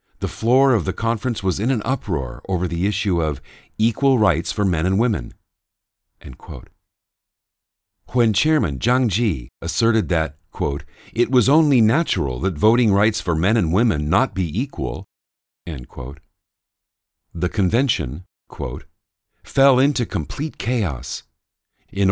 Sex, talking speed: male, 125 wpm